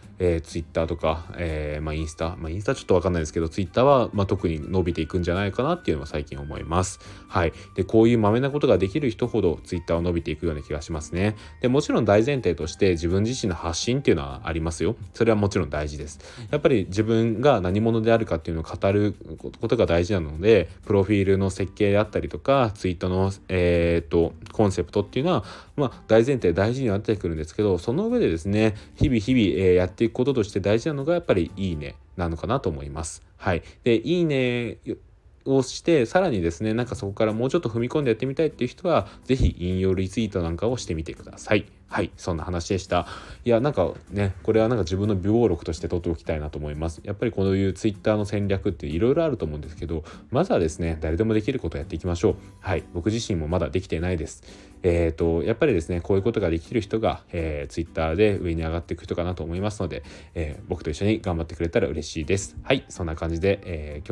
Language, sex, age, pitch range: Japanese, male, 20-39, 85-110 Hz